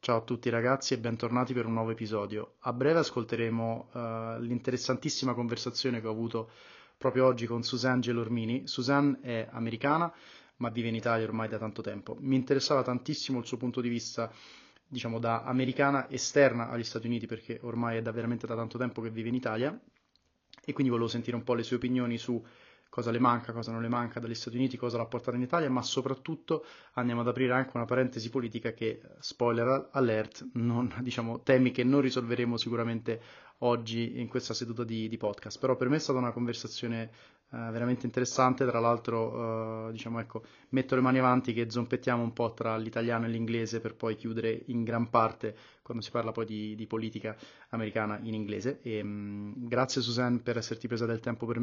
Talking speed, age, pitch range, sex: 190 wpm, 20-39, 115-125 Hz, male